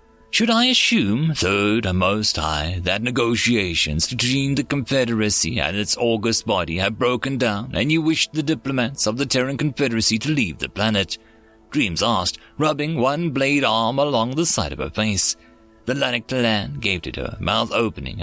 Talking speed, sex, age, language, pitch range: 170 wpm, male, 30-49, English, 100-145 Hz